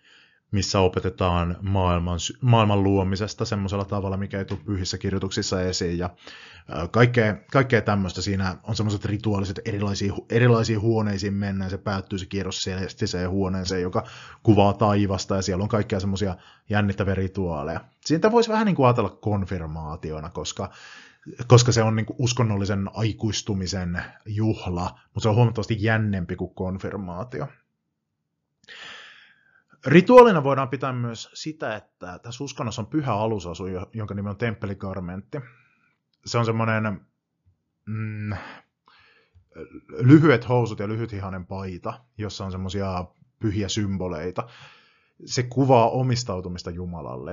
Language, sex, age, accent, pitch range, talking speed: Finnish, male, 30-49, native, 95-115 Hz, 120 wpm